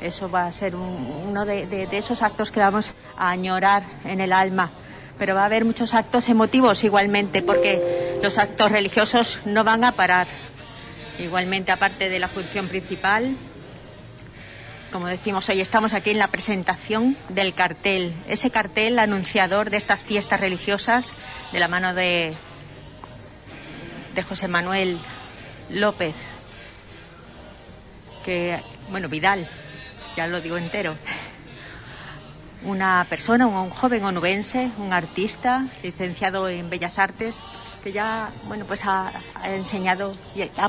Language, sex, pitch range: Spanish, female, 175-205 Hz